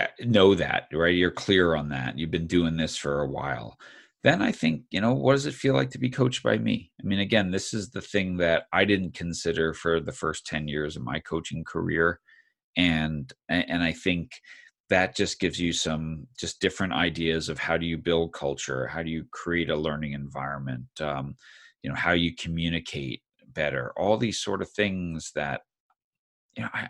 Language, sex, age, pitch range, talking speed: English, male, 40-59, 80-95 Hz, 195 wpm